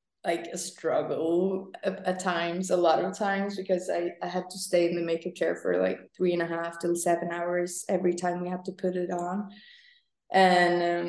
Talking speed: 200 wpm